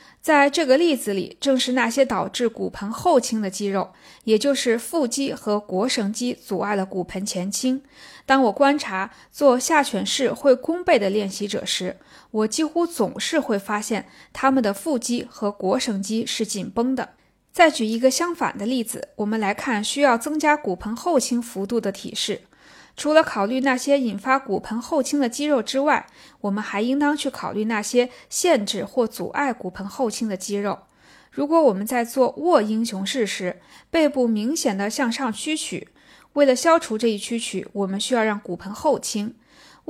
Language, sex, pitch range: Chinese, female, 210-275 Hz